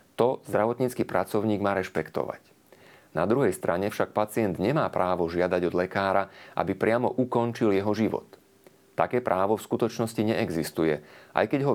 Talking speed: 145 wpm